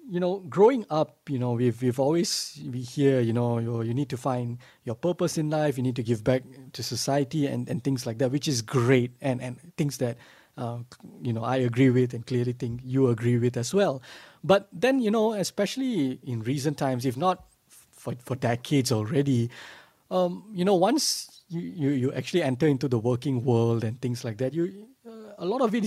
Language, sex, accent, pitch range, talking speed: English, male, Malaysian, 125-170 Hz, 210 wpm